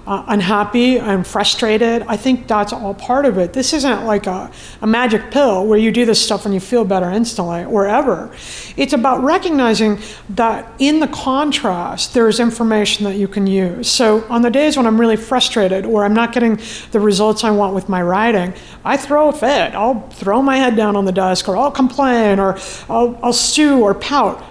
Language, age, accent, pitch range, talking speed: English, 50-69, American, 200-255 Hz, 205 wpm